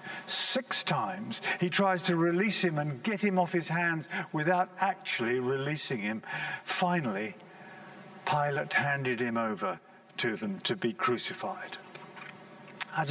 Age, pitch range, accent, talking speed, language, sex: 50-69, 180-190 Hz, British, 130 wpm, English, male